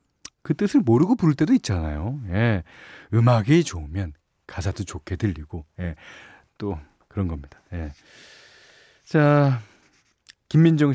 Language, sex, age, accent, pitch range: Korean, male, 40-59, native, 95-150 Hz